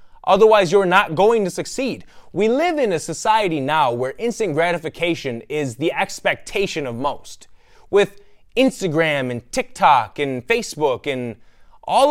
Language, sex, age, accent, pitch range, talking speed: English, male, 20-39, American, 140-220 Hz, 140 wpm